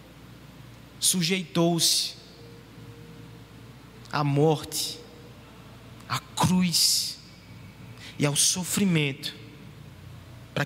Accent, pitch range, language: Brazilian, 150-215 Hz, Portuguese